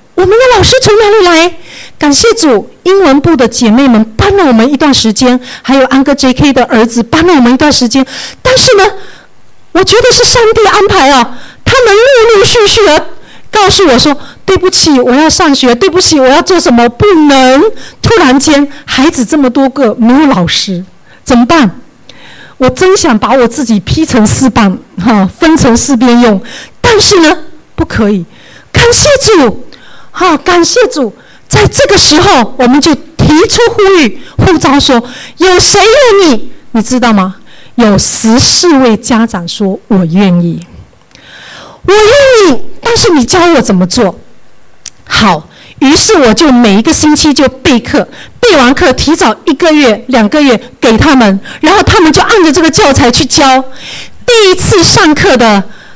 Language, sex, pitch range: English, female, 245-375 Hz